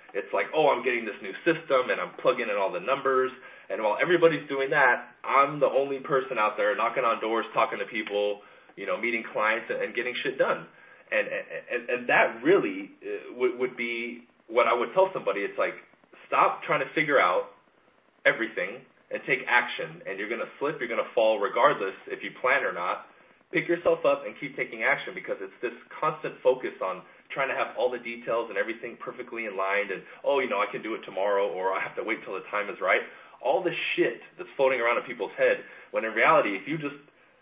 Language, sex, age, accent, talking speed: English, male, 30-49, American, 215 wpm